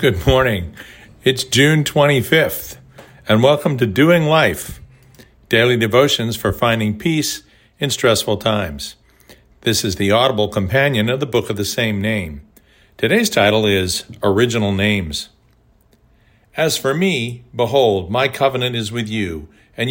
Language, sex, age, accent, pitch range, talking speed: English, male, 50-69, American, 105-135 Hz, 135 wpm